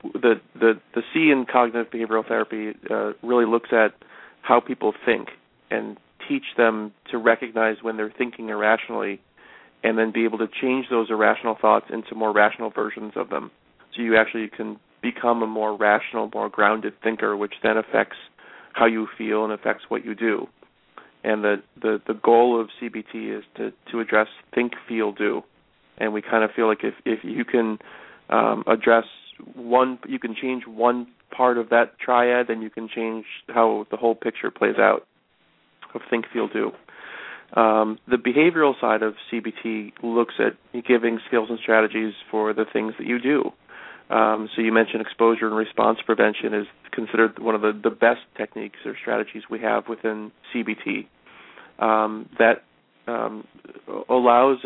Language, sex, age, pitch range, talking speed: English, male, 40-59, 110-120 Hz, 170 wpm